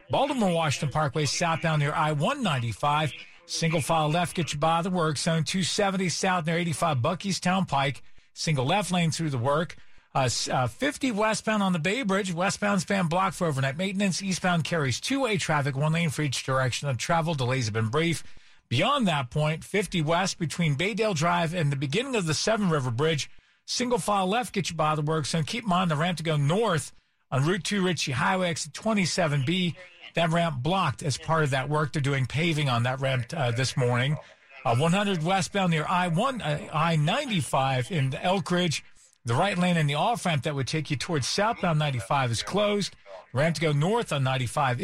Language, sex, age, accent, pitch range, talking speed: English, male, 50-69, American, 145-185 Hz, 190 wpm